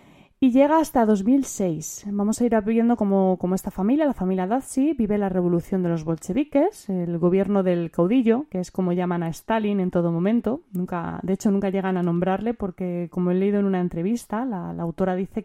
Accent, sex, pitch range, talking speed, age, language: Spanish, female, 175-215 Hz, 200 wpm, 20-39, Spanish